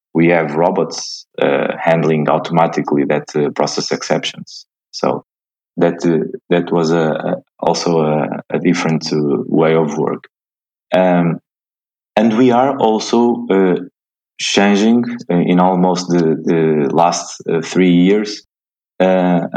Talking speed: 125 wpm